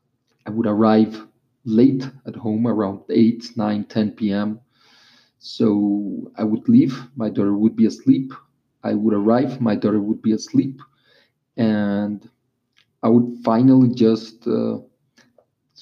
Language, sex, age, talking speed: English, male, 30-49, 130 wpm